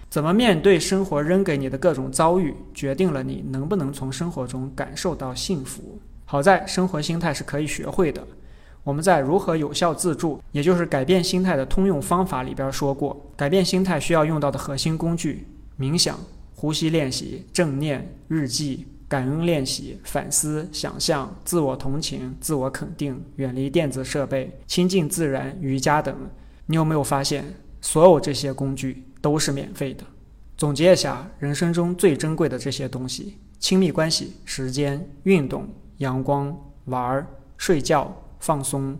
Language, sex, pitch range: Chinese, male, 135-175 Hz